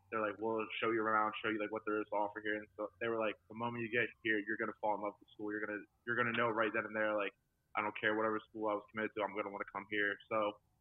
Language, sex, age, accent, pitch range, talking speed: English, male, 20-39, American, 110-120 Hz, 340 wpm